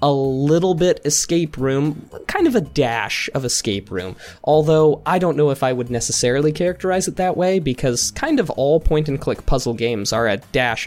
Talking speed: 190 wpm